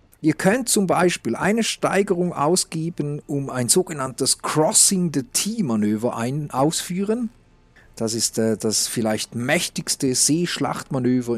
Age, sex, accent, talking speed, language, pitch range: 40-59, male, German, 95 wpm, German, 120-175 Hz